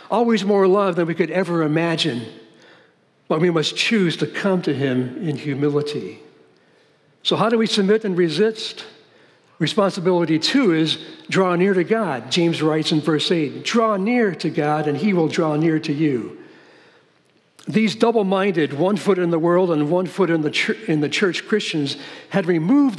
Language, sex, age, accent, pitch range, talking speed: English, male, 60-79, American, 165-215 Hz, 170 wpm